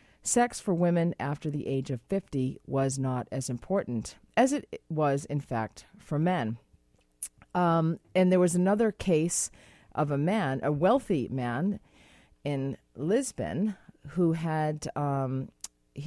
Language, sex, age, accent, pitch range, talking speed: English, female, 40-59, American, 135-195 Hz, 135 wpm